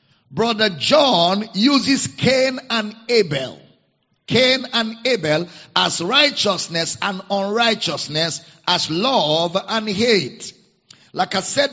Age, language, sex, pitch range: 50-69, English, male, 180-250 Hz